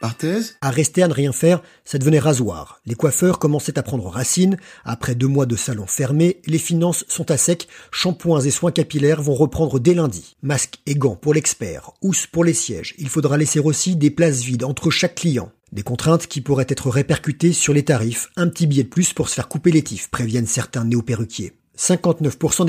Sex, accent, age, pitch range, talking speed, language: male, French, 40-59, 125-165 Hz, 205 wpm, French